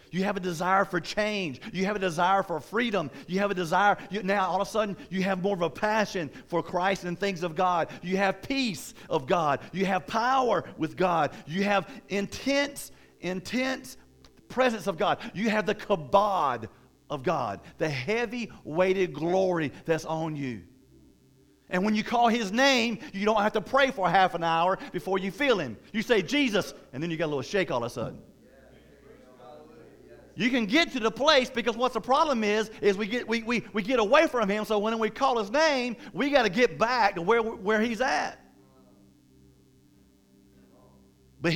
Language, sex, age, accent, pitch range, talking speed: English, male, 50-69, American, 180-235 Hz, 195 wpm